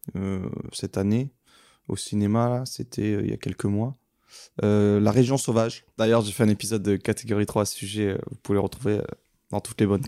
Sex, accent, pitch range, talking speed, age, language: male, French, 100-120 Hz, 215 wpm, 20-39, French